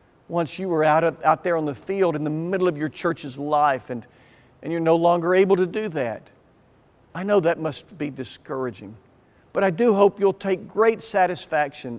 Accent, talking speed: American, 200 wpm